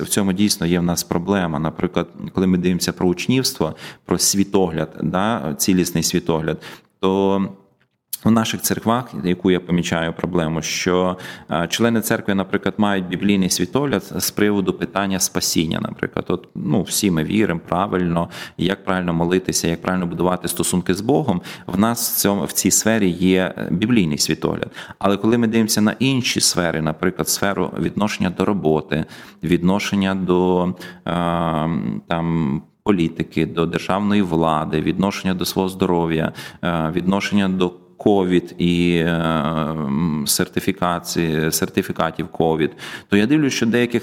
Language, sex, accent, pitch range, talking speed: Ukrainian, male, native, 85-105 Hz, 130 wpm